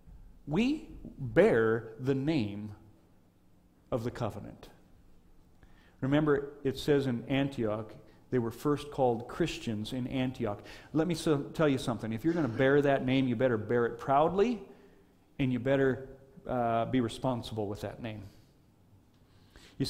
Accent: American